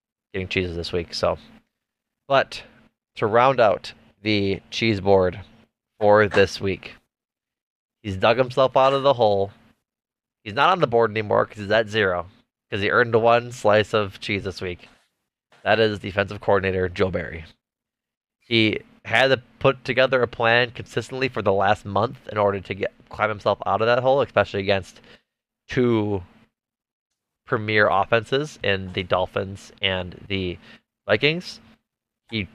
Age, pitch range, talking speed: 20-39, 95-115 Hz, 150 wpm